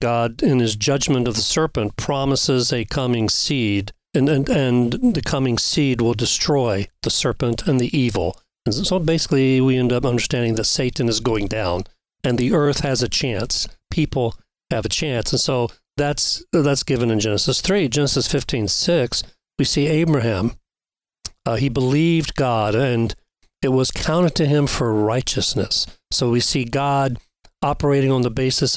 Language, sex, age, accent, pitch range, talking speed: English, male, 40-59, American, 115-140 Hz, 165 wpm